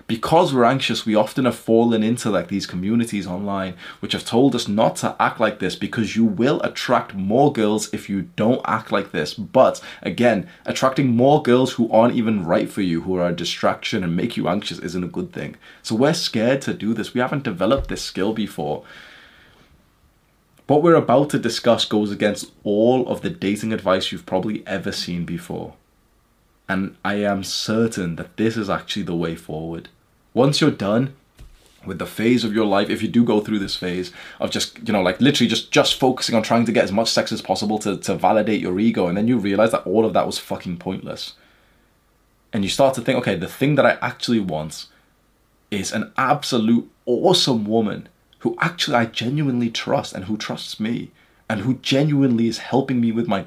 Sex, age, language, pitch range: male, 20-39, English, 100-120 Hz